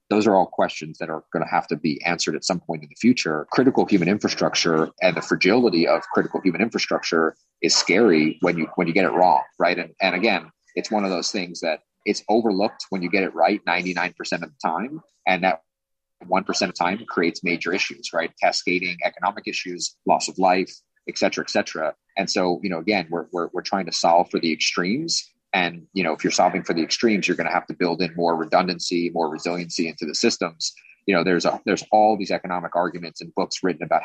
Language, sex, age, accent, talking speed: English, male, 30-49, American, 225 wpm